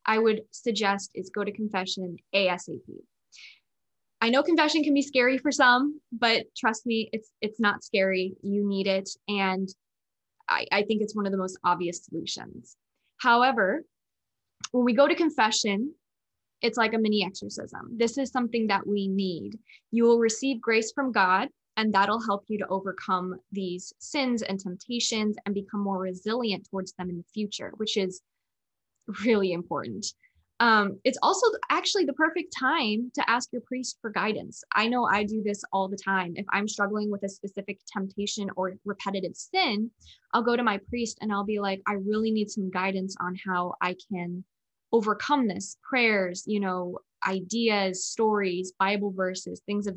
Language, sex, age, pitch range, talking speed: English, female, 10-29, 190-230 Hz, 170 wpm